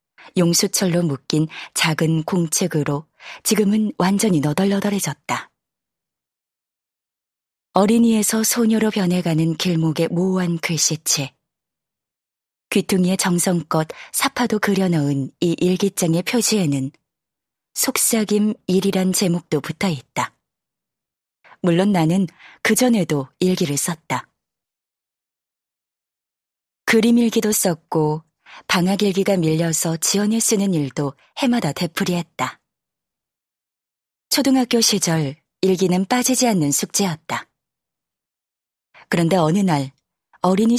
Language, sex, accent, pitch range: Korean, female, native, 160-210 Hz